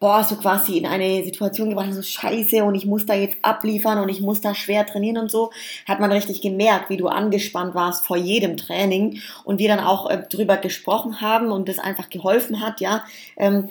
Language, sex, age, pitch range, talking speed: German, female, 20-39, 185-215 Hz, 215 wpm